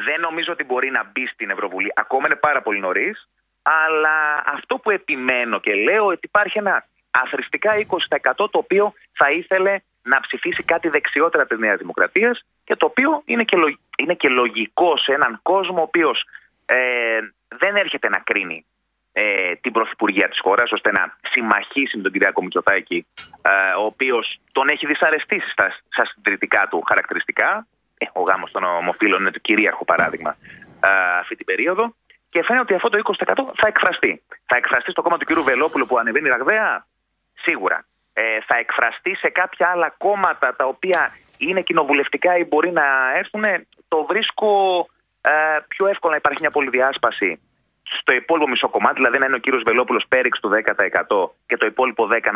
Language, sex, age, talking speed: Greek, male, 30-49, 165 wpm